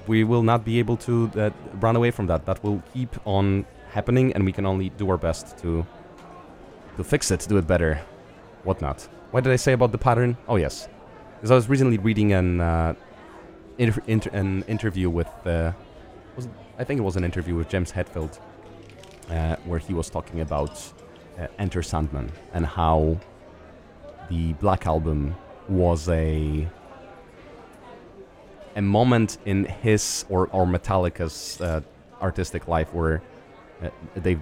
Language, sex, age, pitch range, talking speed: English, male, 30-49, 80-105 Hz, 160 wpm